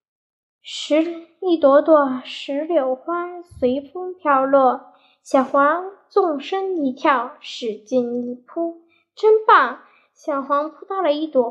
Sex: female